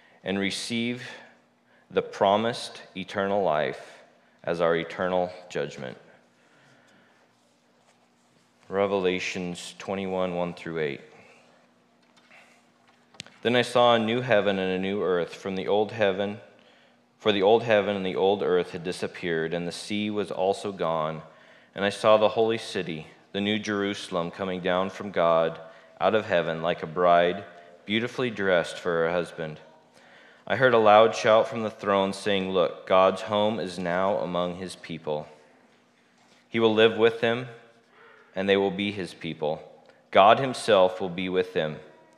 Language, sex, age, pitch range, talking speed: English, male, 20-39, 85-110 Hz, 145 wpm